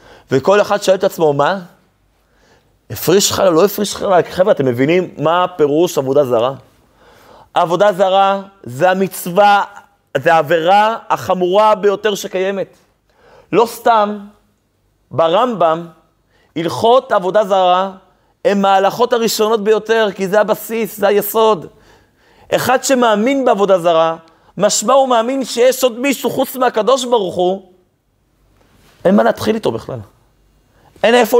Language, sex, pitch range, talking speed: Hebrew, male, 170-245 Hz, 120 wpm